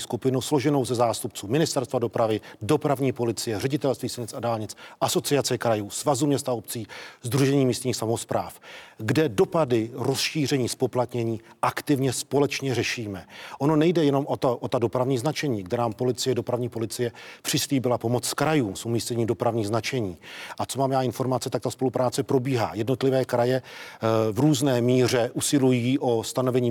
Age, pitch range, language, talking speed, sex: 40-59, 120-140 Hz, Czech, 145 wpm, male